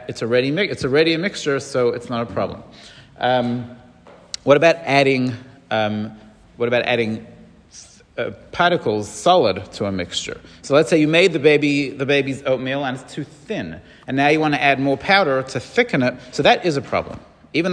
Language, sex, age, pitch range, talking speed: English, male, 40-59, 120-150 Hz, 195 wpm